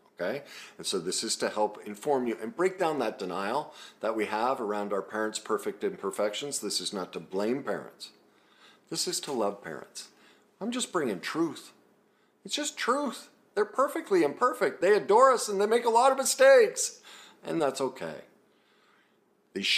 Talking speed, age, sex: 175 wpm, 50-69, male